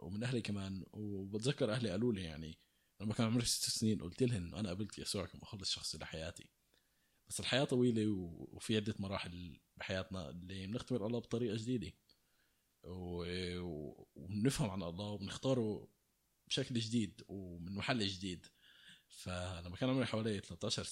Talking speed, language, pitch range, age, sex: 140 wpm, Arabic, 95-120 Hz, 20-39, male